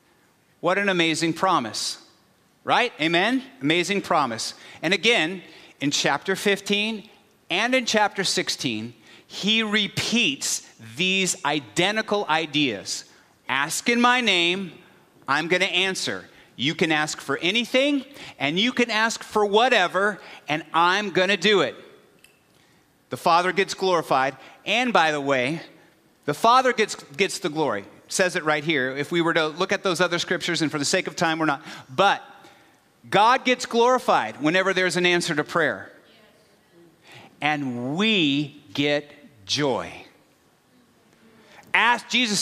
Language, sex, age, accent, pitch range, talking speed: English, male, 40-59, American, 150-205 Hz, 135 wpm